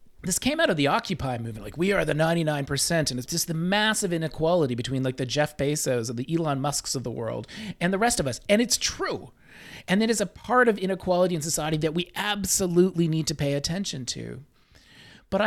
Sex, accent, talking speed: male, American, 215 wpm